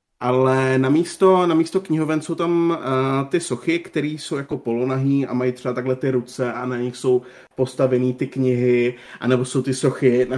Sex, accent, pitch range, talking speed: male, native, 120-135 Hz, 185 wpm